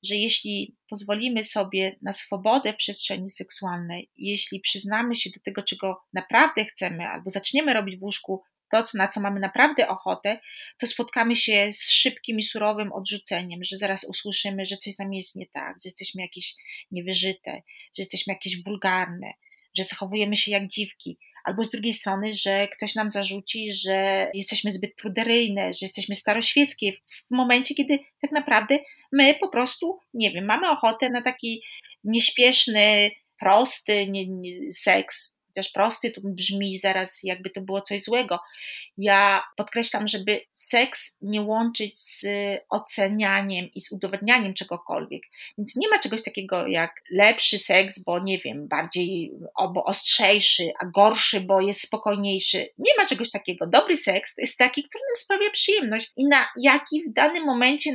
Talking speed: 155 wpm